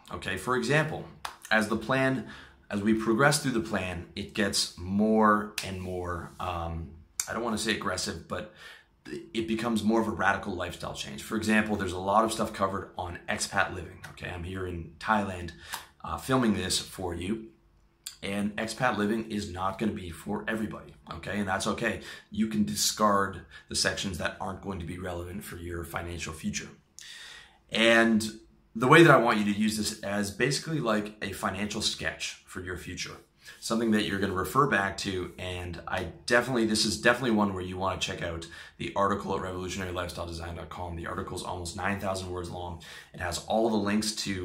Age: 30-49